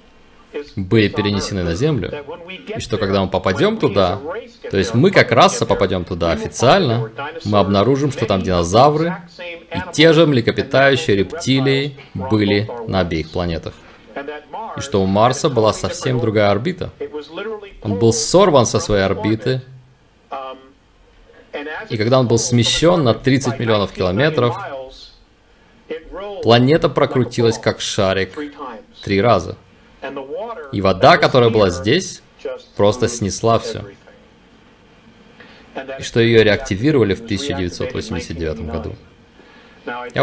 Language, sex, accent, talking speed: Russian, male, native, 115 wpm